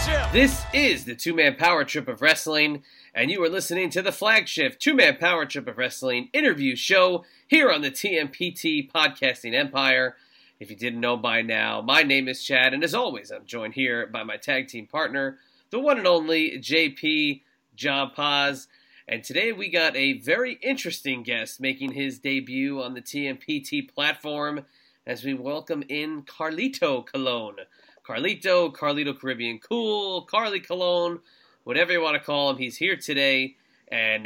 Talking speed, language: 165 wpm, English